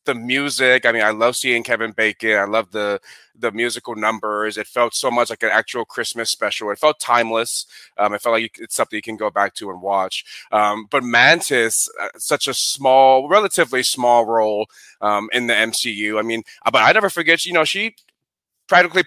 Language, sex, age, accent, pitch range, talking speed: English, male, 30-49, American, 105-125 Hz, 200 wpm